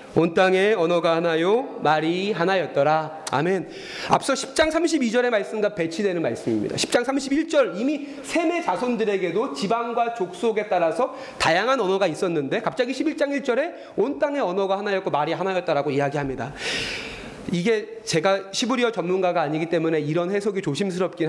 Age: 30-49